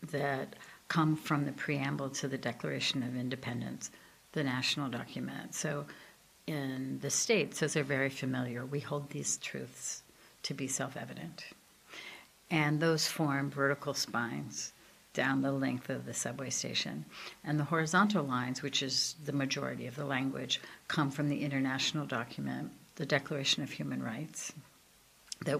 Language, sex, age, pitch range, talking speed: English, female, 60-79, 130-150 Hz, 145 wpm